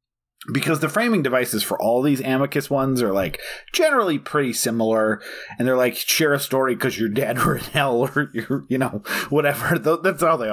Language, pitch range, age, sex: English, 115-155 Hz, 30-49, male